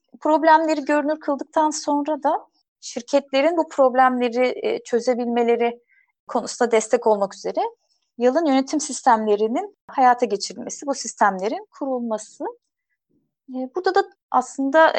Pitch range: 225-300 Hz